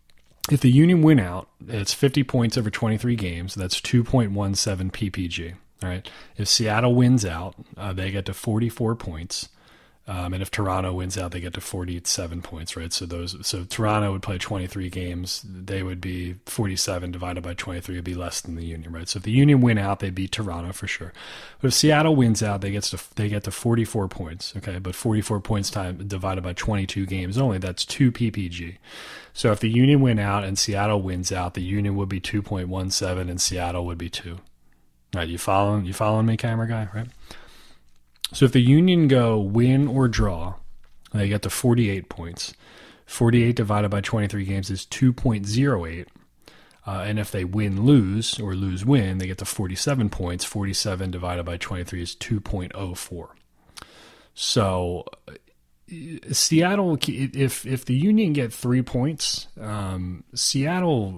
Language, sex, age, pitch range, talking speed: English, male, 30-49, 90-115 Hz, 190 wpm